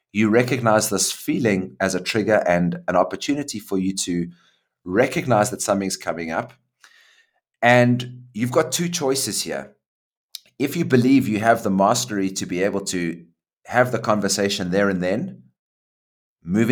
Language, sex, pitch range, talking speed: English, male, 90-120 Hz, 150 wpm